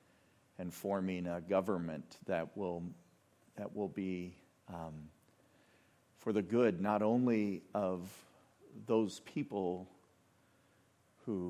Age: 50-69